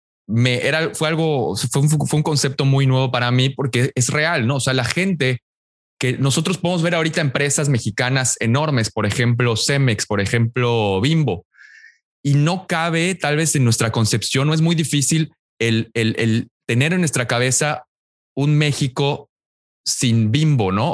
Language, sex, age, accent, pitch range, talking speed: English, male, 20-39, Mexican, 125-165 Hz, 170 wpm